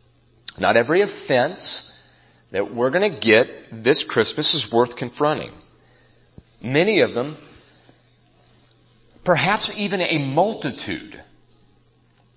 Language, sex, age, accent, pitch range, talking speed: English, male, 40-59, American, 115-160 Hz, 95 wpm